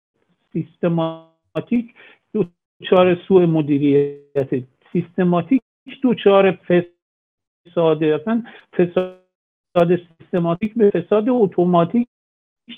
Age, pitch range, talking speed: 50-69, 170-220 Hz, 65 wpm